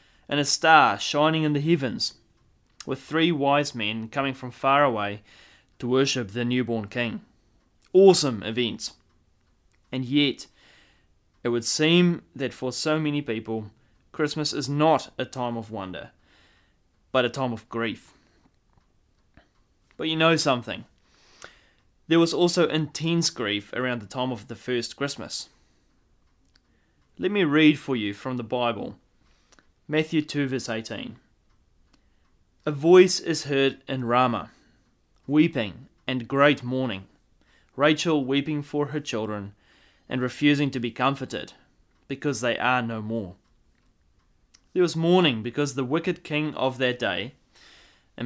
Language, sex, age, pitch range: English, male, 20-39, 115-150 Hz